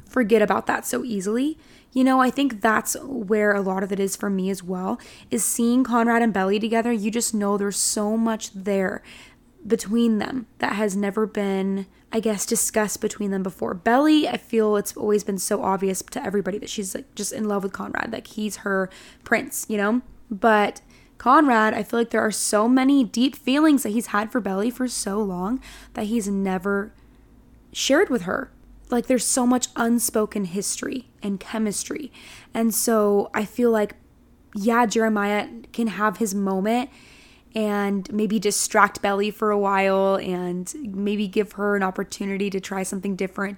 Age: 10-29